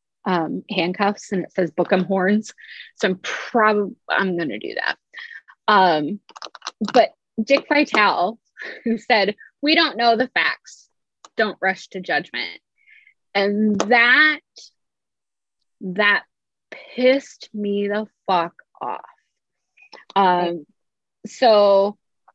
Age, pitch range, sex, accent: 20-39, 180-240 Hz, female, American